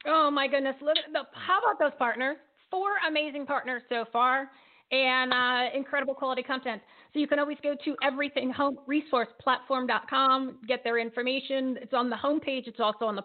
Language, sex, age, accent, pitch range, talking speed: English, female, 40-59, American, 210-265 Hz, 170 wpm